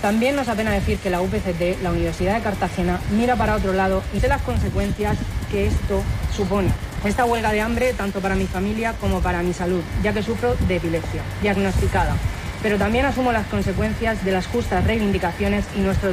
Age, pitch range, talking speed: 30-49, 100-140 Hz, 190 wpm